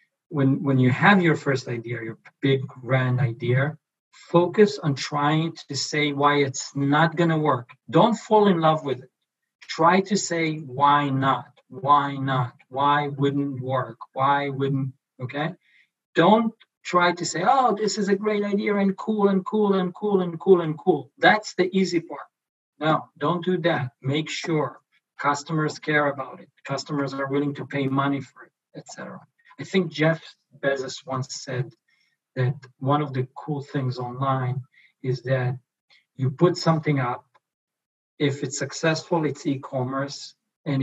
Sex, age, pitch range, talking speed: male, 40-59, 135-170 Hz, 160 wpm